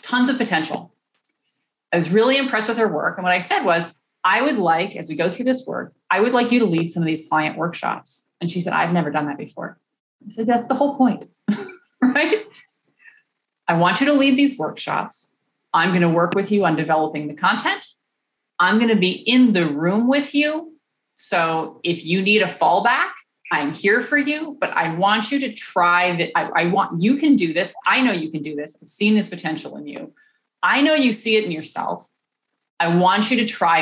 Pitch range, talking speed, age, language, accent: 175-255 Hz, 220 wpm, 30-49, English, American